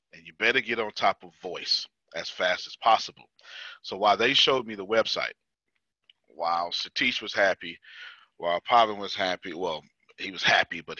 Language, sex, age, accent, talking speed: English, male, 40-59, American, 175 wpm